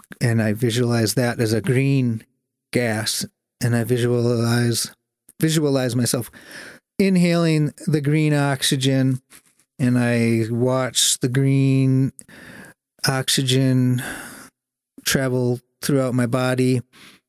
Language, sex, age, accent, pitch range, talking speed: English, male, 40-59, American, 115-135 Hz, 95 wpm